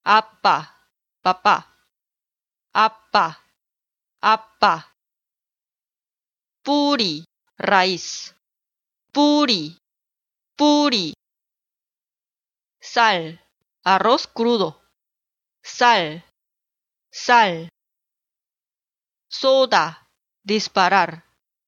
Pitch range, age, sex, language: 190-265 Hz, 30-49, female, Korean